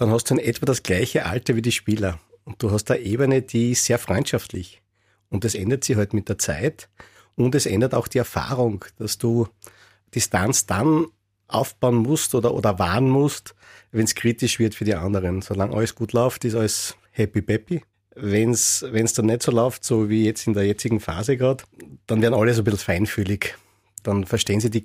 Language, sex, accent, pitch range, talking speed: German, male, Austrian, 105-130 Hz, 205 wpm